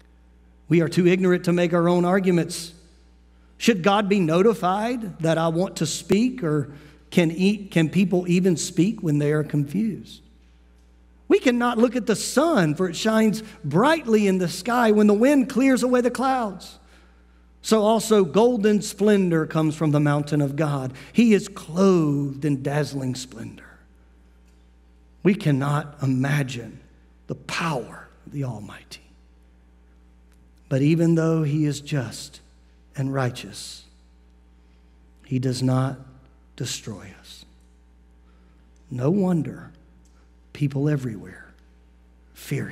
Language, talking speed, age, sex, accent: English, 130 wpm, 50-69, male, American